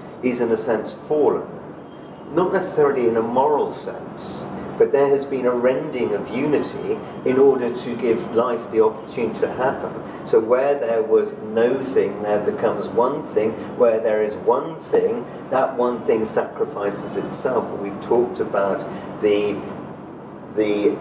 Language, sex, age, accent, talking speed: English, male, 50-69, British, 150 wpm